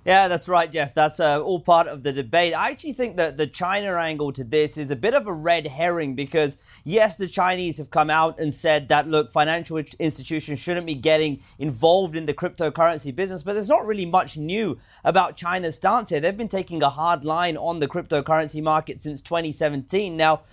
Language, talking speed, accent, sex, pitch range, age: English, 210 wpm, British, male, 145-175 Hz, 30-49